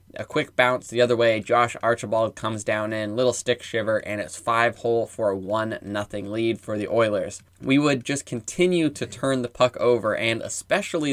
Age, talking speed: 10-29, 200 wpm